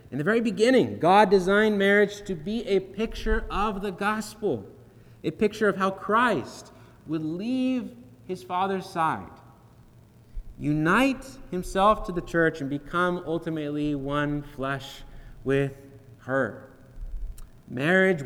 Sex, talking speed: male, 120 wpm